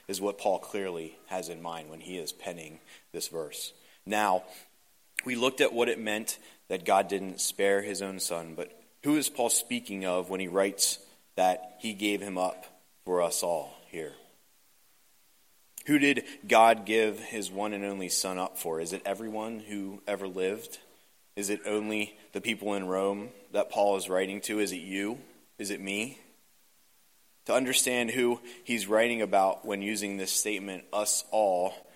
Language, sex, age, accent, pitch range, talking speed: English, male, 30-49, American, 95-110 Hz, 175 wpm